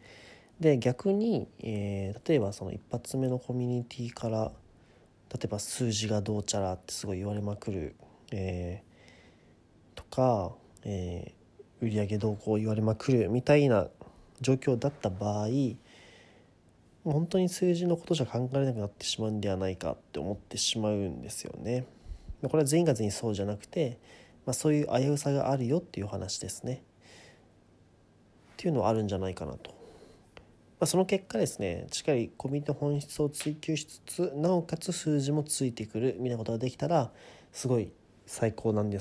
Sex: male